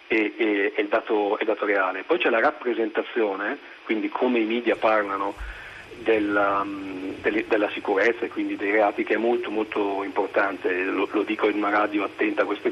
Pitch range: 110-145 Hz